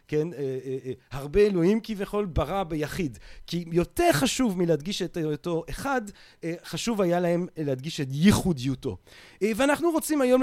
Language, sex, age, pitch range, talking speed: Hebrew, male, 40-59, 150-205 Hz, 125 wpm